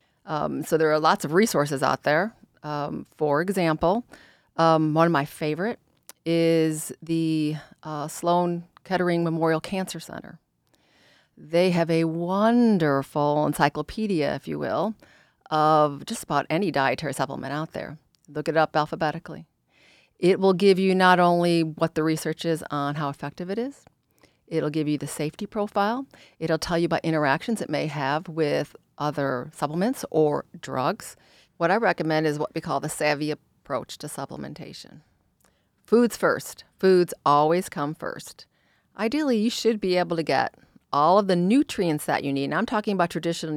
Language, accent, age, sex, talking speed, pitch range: English, American, 40-59, female, 160 wpm, 150-180 Hz